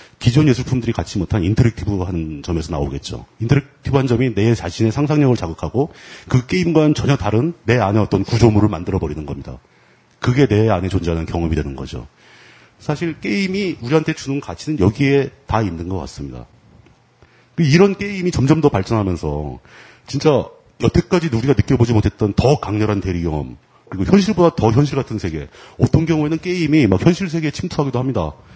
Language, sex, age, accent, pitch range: Korean, male, 40-59, native, 95-140 Hz